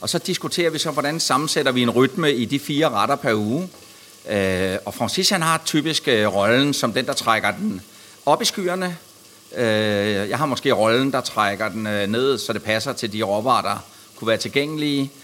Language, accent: Danish, native